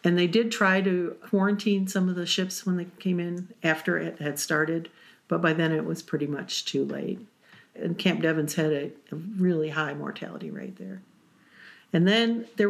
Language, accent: English, American